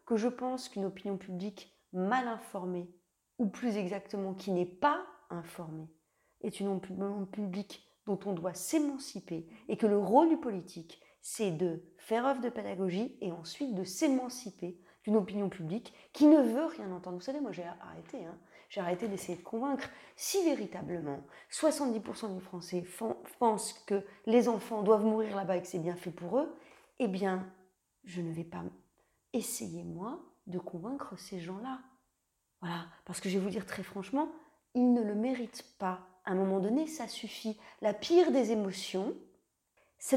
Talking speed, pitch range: 170 wpm, 180-240 Hz